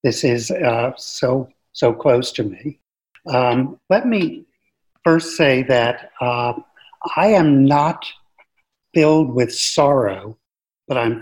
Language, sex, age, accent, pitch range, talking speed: English, male, 50-69, American, 120-150 Hz, 125 wpm